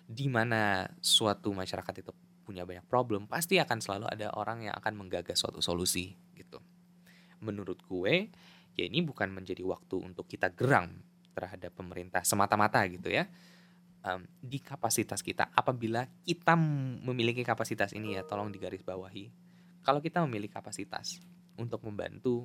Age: 10-29